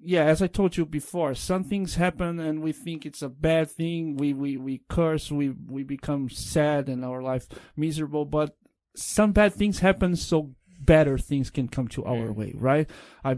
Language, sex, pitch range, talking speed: English, male, 130-170 Hz, 195 wpm